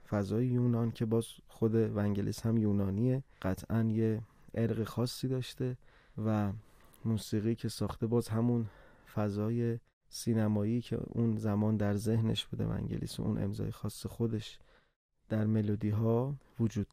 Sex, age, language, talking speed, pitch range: male, 30-49, Persian, 130 wpm, 115-140 Hz